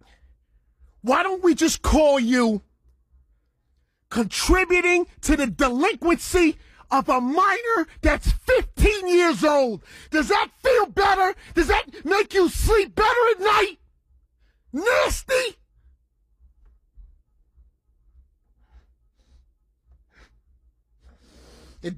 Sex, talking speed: male, 85 wpm